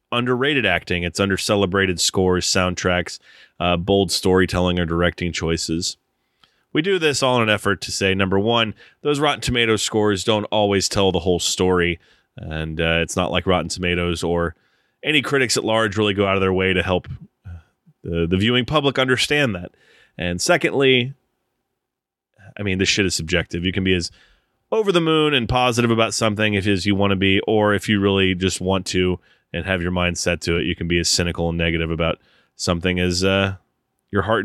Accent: American